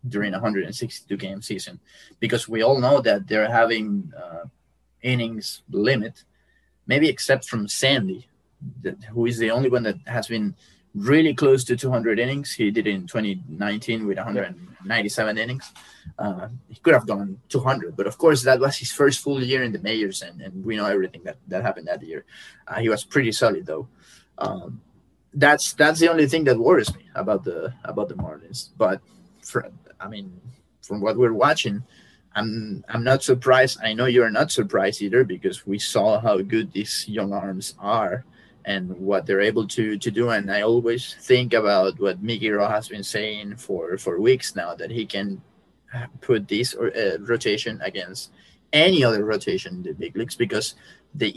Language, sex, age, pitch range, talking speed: English, male, 20-39, 105-130 Hz, 180 wpm